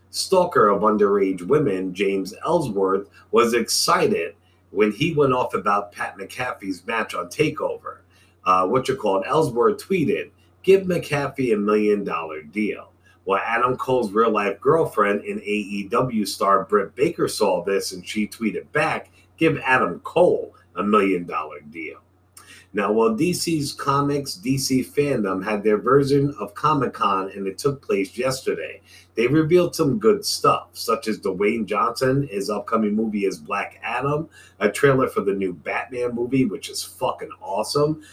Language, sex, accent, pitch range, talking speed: English, male, American, 105-165 Hz, 150 wpm